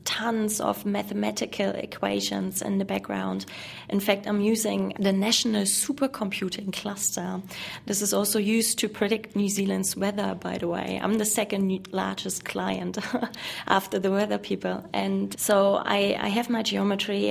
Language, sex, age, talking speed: English, female, 20-39, 150 wpm